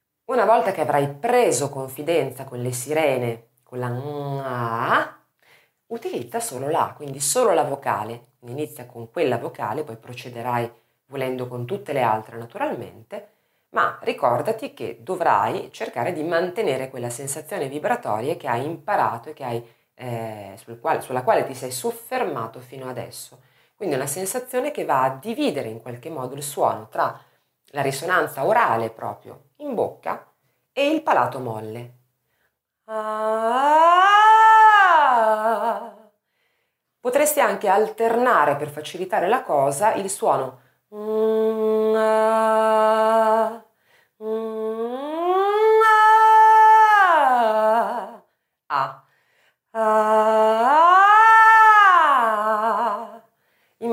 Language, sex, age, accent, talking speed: Italian, female, 30-49, native, 100 wpm